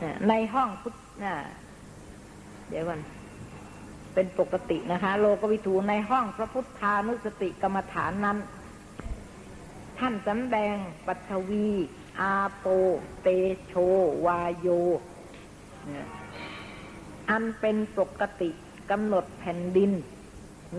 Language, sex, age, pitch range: Thai, female, 60-79, 175-215 Hz